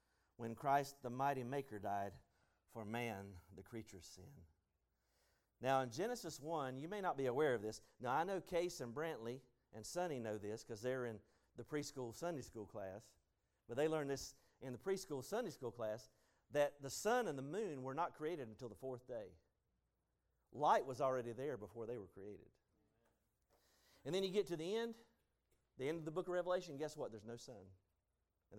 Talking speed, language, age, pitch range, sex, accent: 190 wpm, English, 50-69, 100-140 Hz, male, American